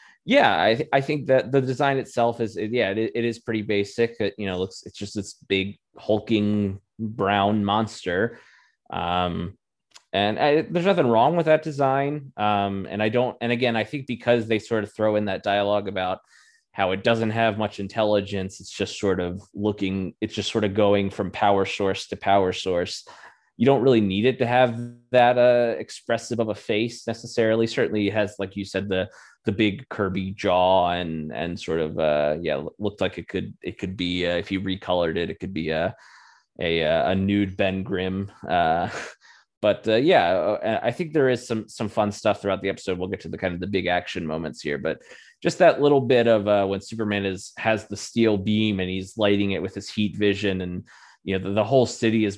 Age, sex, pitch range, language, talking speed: 20-39, male, 95-115 Hz, English, 210 wpm